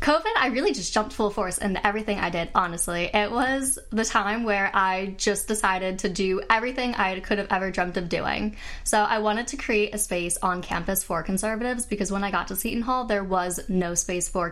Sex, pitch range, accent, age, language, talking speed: female, 185-220 Hz, American, 10-29, English, 220 wpm